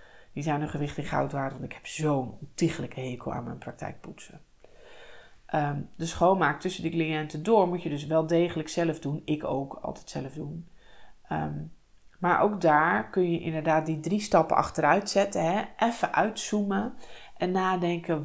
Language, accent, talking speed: English, Dutch, 175 wpm